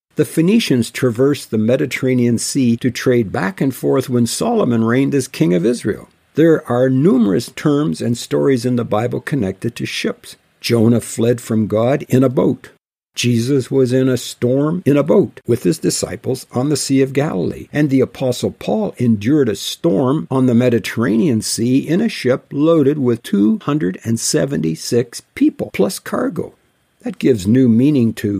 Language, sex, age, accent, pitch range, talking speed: English, male, 60-79, American, 115-140 Hz, 165 wpm